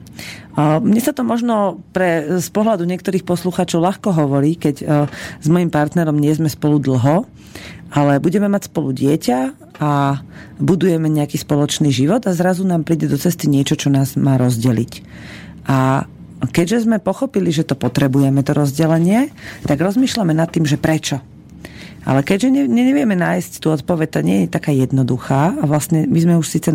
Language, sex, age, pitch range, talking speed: Slovak, female, 40-59, 145-185 Hz, 165 wpm